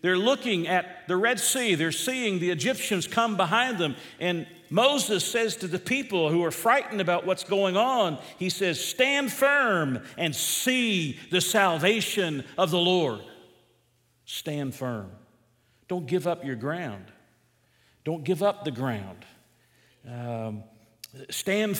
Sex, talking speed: male, 140 wpm